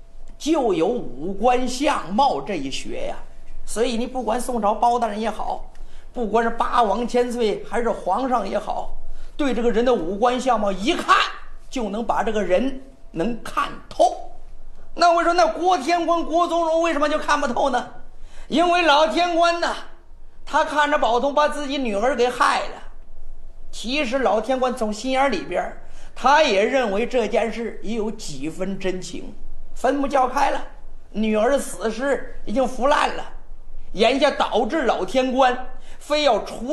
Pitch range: 230-295 Hz